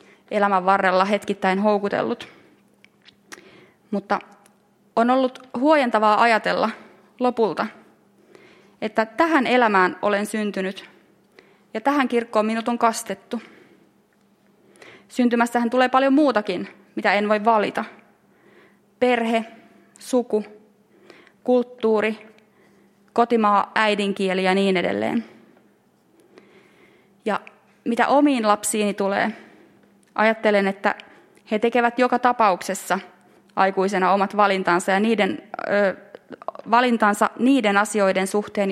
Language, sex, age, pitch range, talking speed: Finnish, female, 20-39, 200-235 Hz, 85 wpm